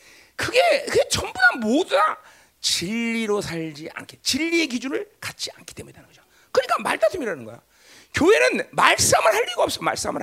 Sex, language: male, Korean